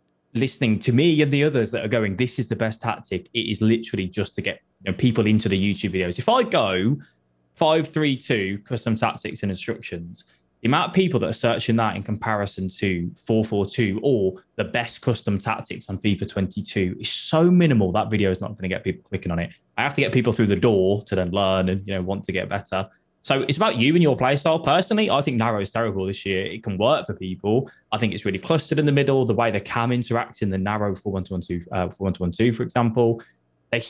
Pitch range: 95-125 Hz